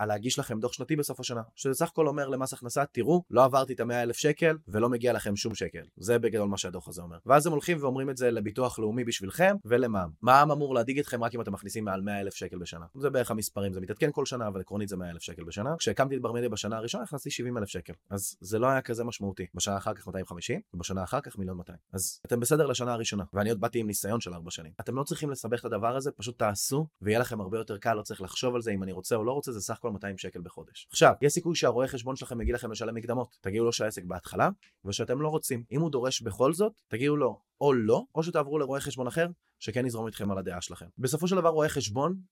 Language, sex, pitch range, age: Hebrew, male, 100-135 Hz, 20-39